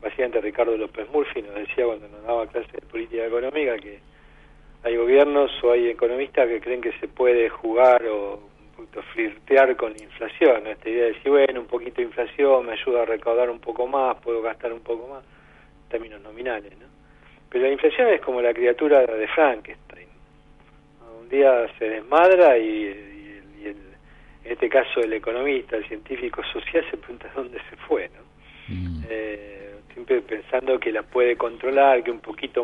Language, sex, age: Spanish, male, 40-59